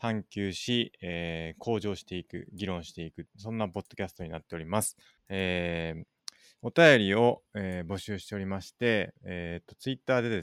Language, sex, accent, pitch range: Japanese, male, native, 85-110 Hz